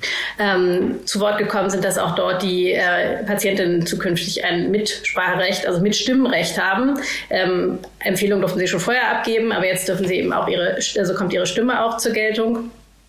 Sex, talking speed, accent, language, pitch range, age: female, 180 wpm, German, German, 185-215 Hz, 30-49